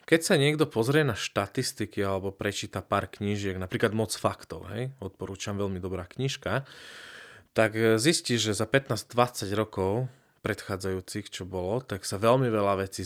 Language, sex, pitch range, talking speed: Slovak, male, 100-125 Hz, 145 wpm